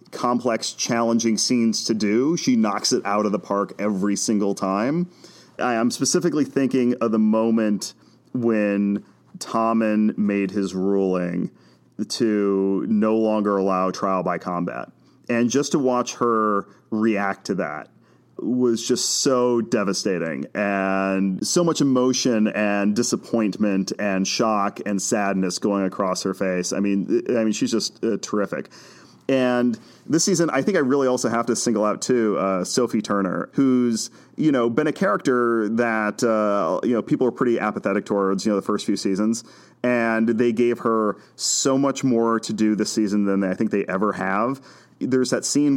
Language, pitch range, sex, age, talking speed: English, 100-120 Hz, male, 30-49, 165 wpm